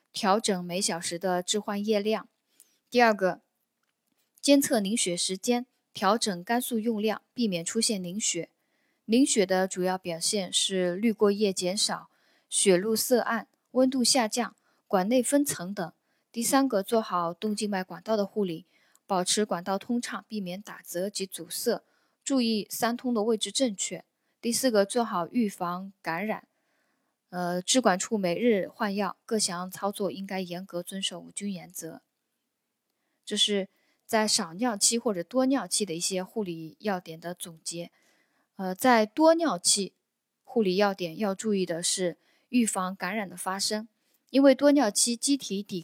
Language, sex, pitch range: Chinese, female, 185-240 Hz